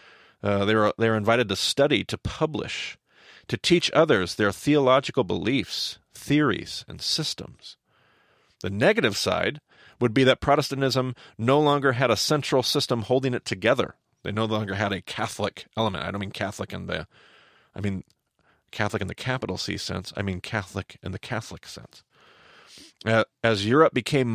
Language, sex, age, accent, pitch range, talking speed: English, male, 40-59, American, 105-140 Hz, 165 wpm